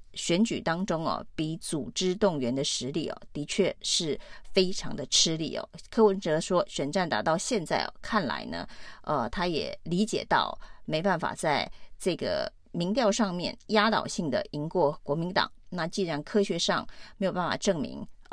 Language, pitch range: Chinese, 160-210 Hz